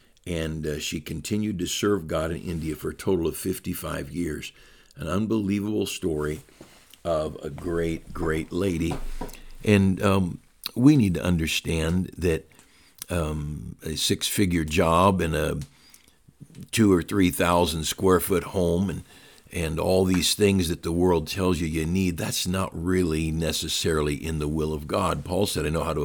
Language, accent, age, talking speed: English, American, 60-79, 160 wpm